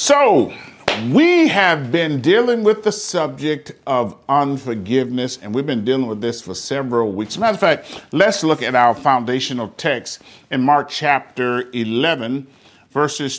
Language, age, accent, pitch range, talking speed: English, 40-59, American, 120-180 Hz, 155 wpm